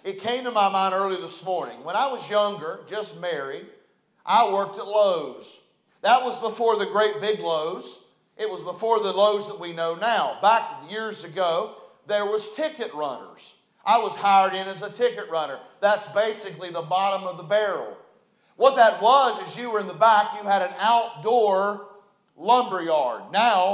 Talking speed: 180 wpm